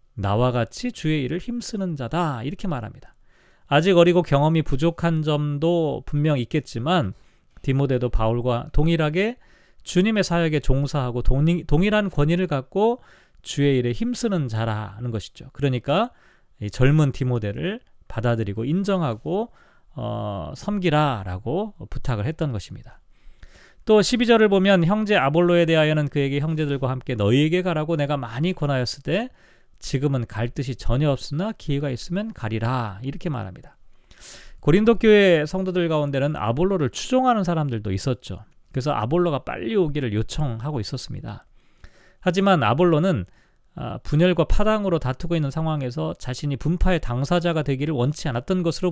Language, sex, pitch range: Korean, male, 125-175 Hz